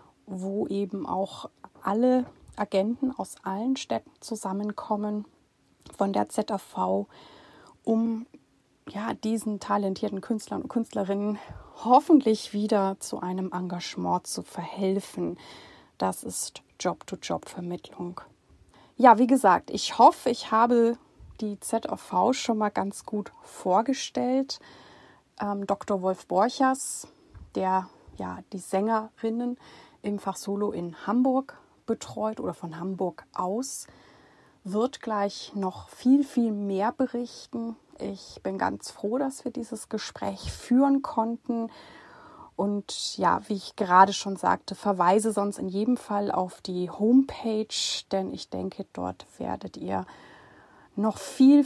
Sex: female